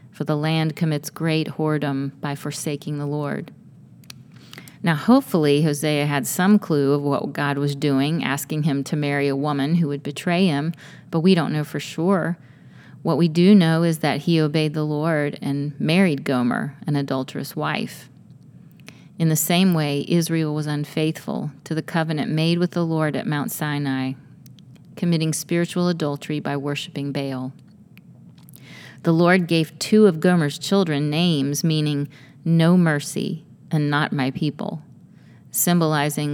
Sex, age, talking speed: female, 40-59, 150 wpm